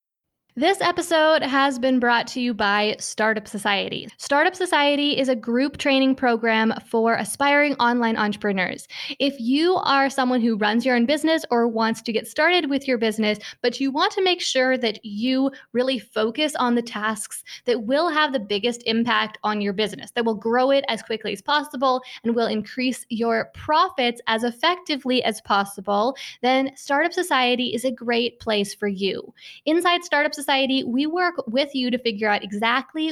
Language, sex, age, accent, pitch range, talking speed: English, female, 10-29, American, 225-285 Hz, 175 wpm